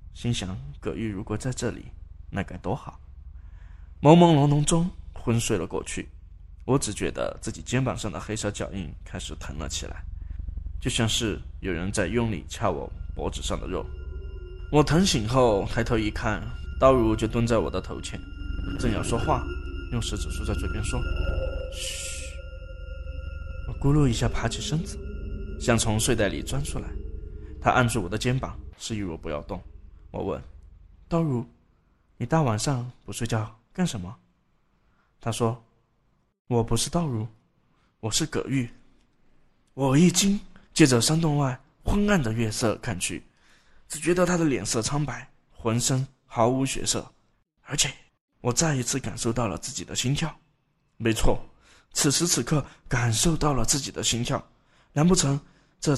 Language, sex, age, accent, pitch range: Chinese, male, 20-39, native, 85-135 Hz